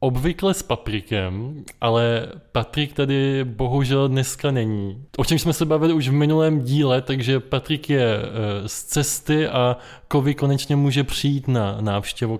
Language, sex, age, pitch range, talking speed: Czech, male, 20-39, 120-145 Hz, 145 wpm